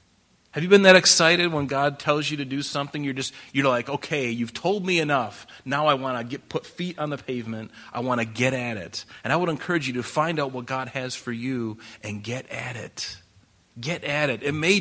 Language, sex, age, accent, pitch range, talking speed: English, male, 30-49, American, 115-150 Hz, 240 wpm